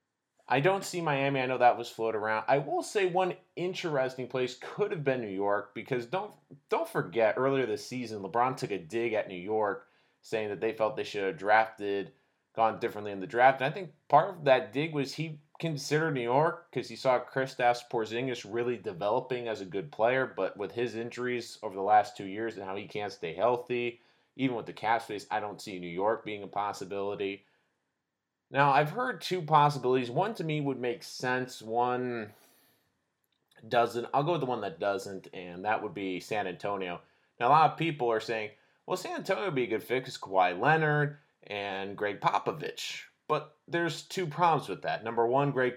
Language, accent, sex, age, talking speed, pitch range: English, American, male, 20-39, 200 wpm, 110-150 Hz